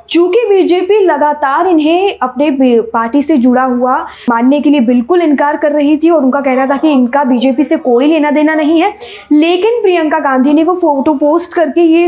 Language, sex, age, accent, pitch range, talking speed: Hindi, female, 20-39, native, 260-335 Hz, 195 wpm